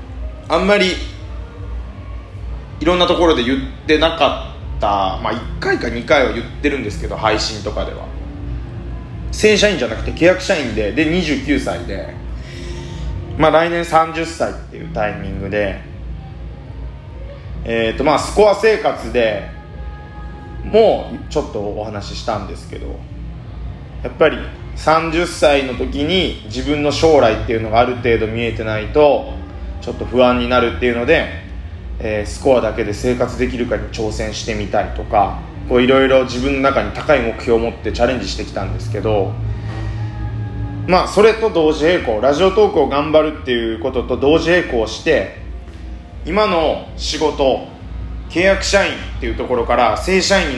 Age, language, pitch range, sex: 20-39, Japanese, 90-155 Hz, male